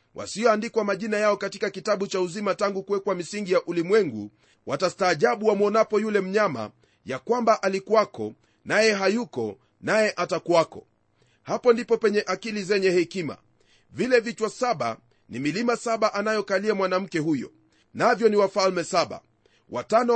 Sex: male